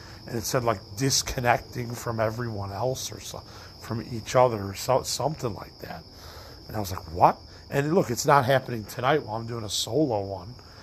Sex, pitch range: male, 105-135 Hz